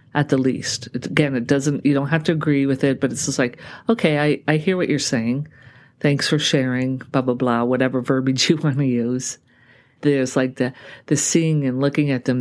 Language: English